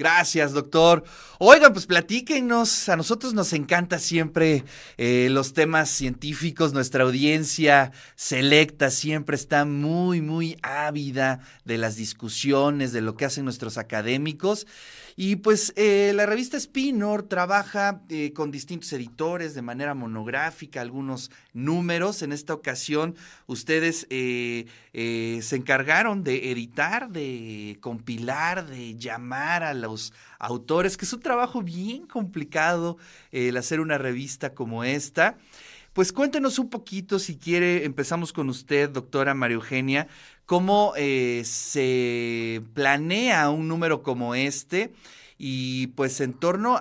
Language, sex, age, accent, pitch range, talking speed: Spanish, male, 30-49, Mexican, 125-170 Hz, 130 wpm